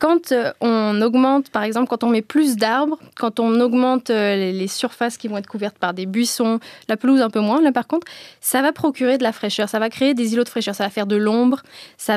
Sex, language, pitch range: female, French, 215-250 Hz